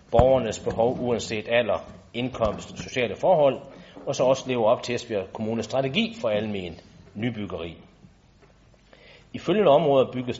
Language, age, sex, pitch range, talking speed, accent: Danish, 40-59, male, 105-130 Hz, 140 wpm, native